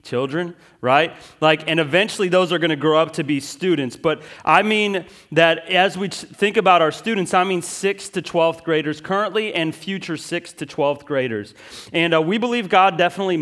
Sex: male